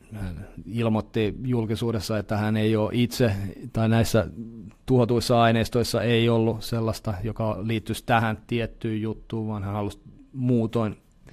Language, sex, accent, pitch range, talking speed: Finnish, male, native, 100-115 Hz, 125 wpm